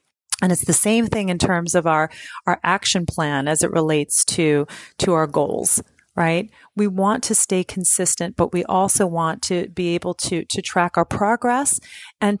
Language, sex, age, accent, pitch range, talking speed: English, female, 30-49, American, 165-205 Hz, 185 wpm